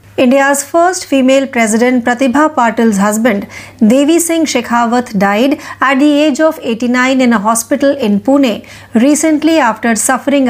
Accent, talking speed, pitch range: native, 135 wpm, 225-290 Hz